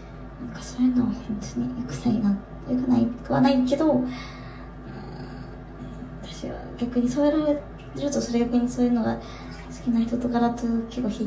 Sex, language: male, Japanese